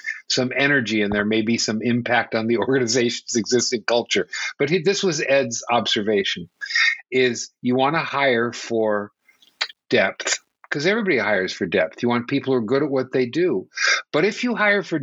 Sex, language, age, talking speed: male, English, 50-69, 180 wpm